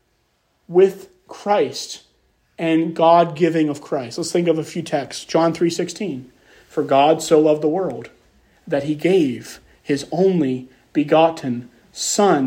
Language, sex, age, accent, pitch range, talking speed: English, male, 30-49, American, 155-210 Hz, 135 wpm